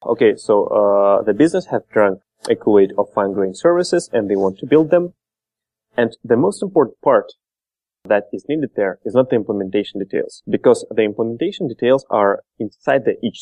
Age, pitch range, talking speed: 30-49, 100-140 Hz, 180 wpm